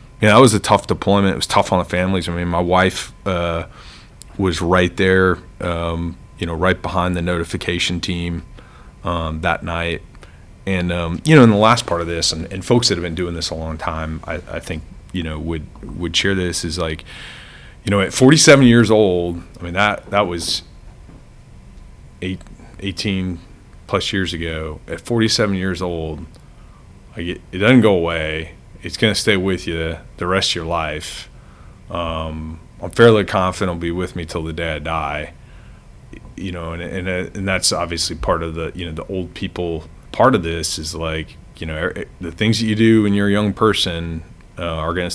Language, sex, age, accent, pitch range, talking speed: English, male, 30-49, American, 85-95 Hz, 195 wpm